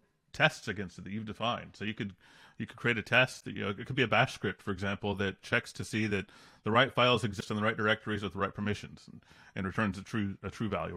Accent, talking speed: American, 275 wpm